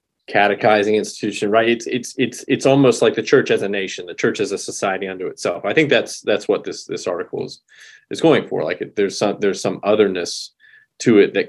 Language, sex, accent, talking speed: English, male, American, 220 wpm